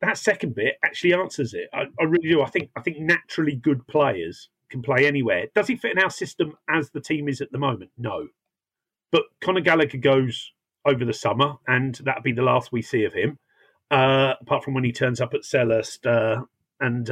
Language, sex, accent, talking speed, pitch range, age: English, male, British, 215 wpm, 130-170 Hz, 40-59